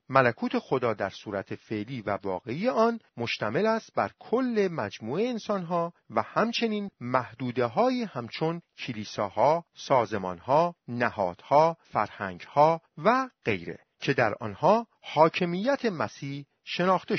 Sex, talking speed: male, 110 wpm